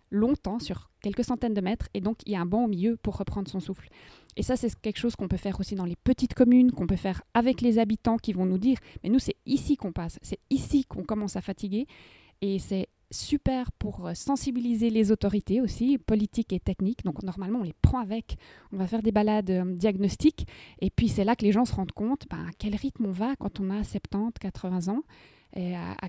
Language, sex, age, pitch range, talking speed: French, female, 20-39, 195-235 Hz, 230 wpm